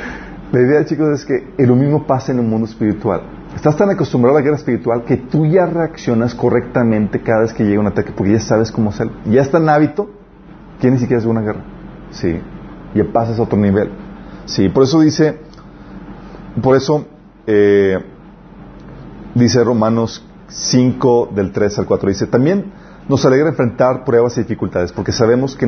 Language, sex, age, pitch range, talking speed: Spanish, male, 40-59, 110-140 Hz, 180 wpm